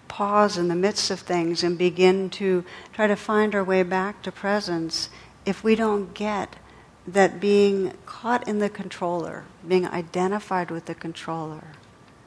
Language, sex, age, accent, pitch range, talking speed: English, female, 60-79, American, 160-185 Hz, 155 wpm